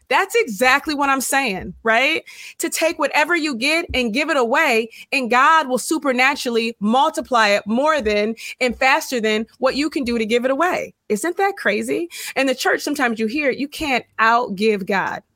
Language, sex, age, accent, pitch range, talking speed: English, female, 20-39, American, 205-265 Hz, 190 wpm